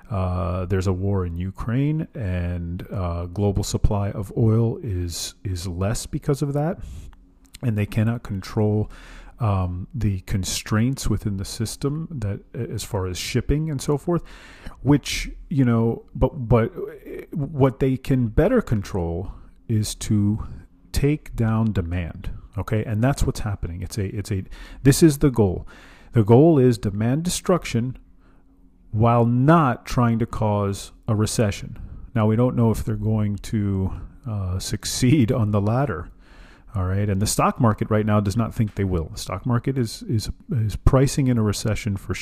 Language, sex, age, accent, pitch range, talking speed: English, male, 40-59, American, 95-125 Hz, 160 wpm